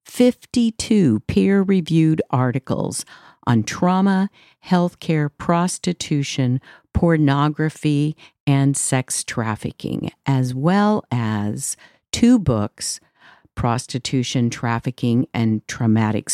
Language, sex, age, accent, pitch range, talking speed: English, female, 50-69, American, 120-160 Hz, 75 wpm